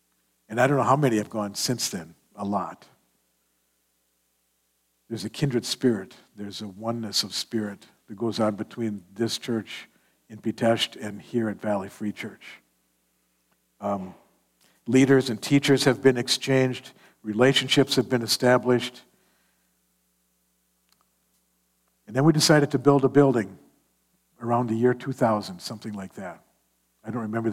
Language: English